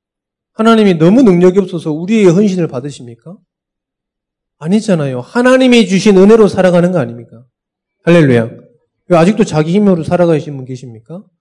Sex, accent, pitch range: male, native, 130-190 Hz